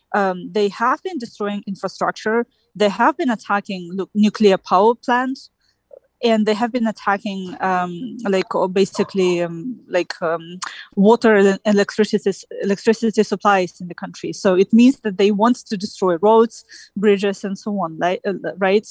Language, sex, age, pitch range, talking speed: English, female, 20-39, 185-225 Hz, 150 wpm